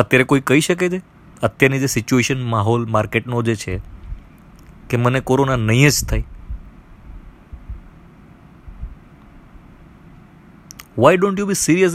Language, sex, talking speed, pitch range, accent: Gujarati, male, 65 wpm, 110-160 Hz, native